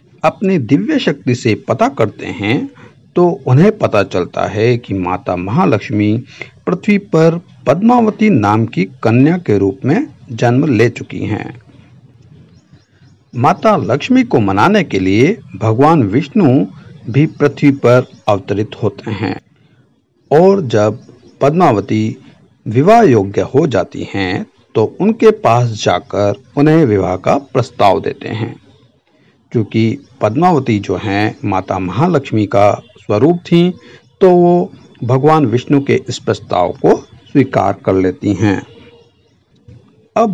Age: 50-69